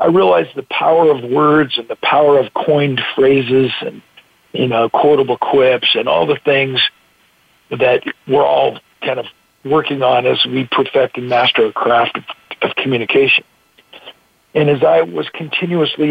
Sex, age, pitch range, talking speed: male, 50-69, 130-155 Hz, 160 wpm